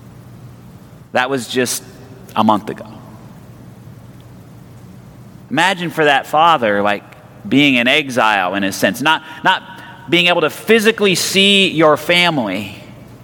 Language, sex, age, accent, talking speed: English, male, 40-59, American, 120 wpm